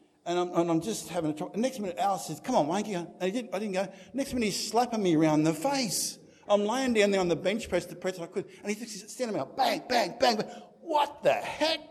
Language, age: English, 50-69